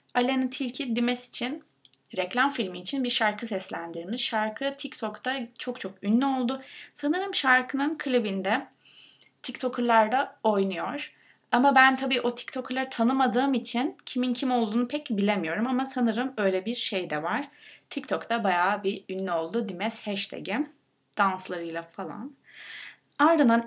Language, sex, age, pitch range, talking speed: Turkish, female, 20-39, 200-260 Hz, 130 wpm